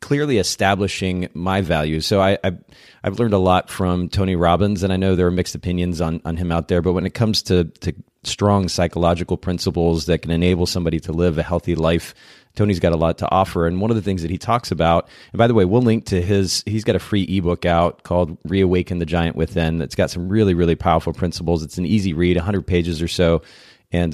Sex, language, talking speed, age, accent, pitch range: male, English, 240 wpm, 30-49, American, 85-105 Hz